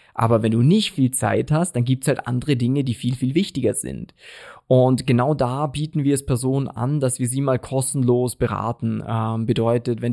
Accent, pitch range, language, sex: German, 120-145 Hz, German, male